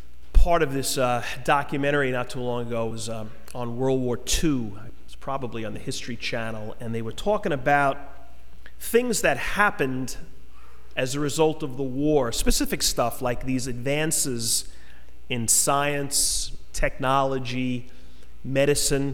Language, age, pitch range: English, 30-49, 115-145 Hz